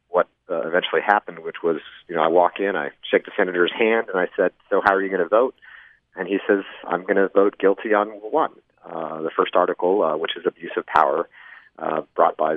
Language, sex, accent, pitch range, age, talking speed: English, male, American, 90-135 Hz, 40-59, 240 wpm